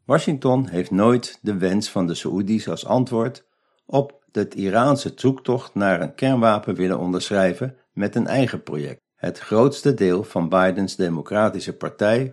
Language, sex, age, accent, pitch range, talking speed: Dutch, male, 60-79, Dutch, 95-130 Hz, 145 wpm